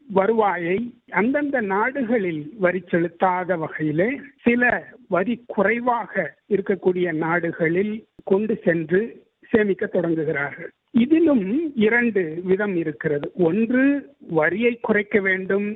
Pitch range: 185-230 Hz